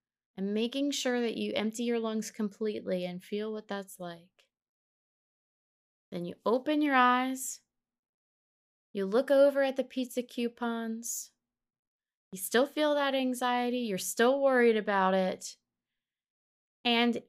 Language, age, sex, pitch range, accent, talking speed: English, 20-39, female, 210-260 Hz, American, 130 wpm